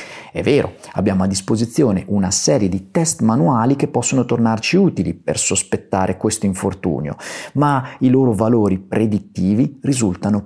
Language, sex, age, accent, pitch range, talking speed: Italian, male, 40-59, native, 100-165 Hz, 140 wpm